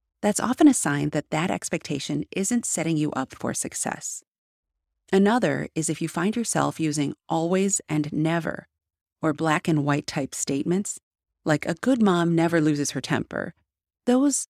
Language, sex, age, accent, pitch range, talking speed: English, female, 30-49, American, 145-190 Hz, 155 wpm